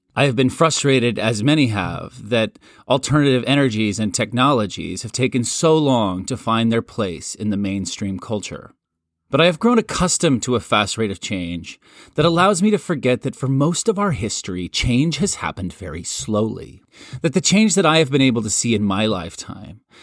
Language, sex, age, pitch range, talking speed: English, male, 30-49, 100-135 Hz, 190 wpm